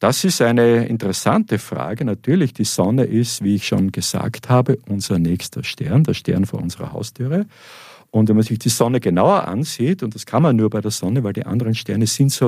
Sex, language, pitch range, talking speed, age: male, German, 105-135 Hz, 210 wpm, 50-69